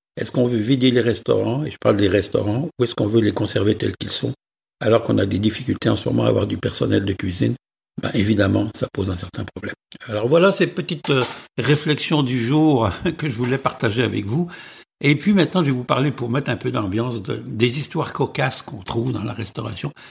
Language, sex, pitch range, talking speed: French, male, 115-150 Hz, 225 wpm